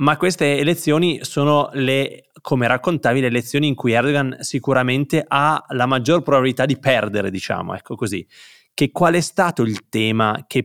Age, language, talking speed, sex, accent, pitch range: 20-39, Italian, 165 wpm, male, native, 105-130 Hz